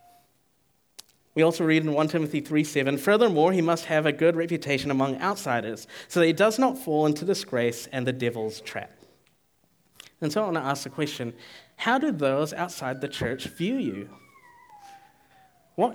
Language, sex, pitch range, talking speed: English, male, 140-185 Hz, 170 wpm